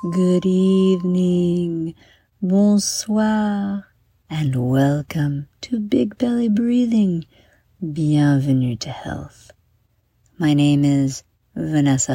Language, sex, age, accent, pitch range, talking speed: English, female, 50-69, American, 120-200 Hz, 80 wpm